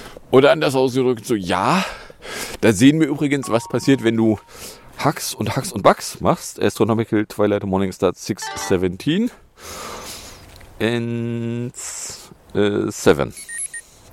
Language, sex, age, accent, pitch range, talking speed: English, male, 40-59, German, 95-130 Hz, 110 wpm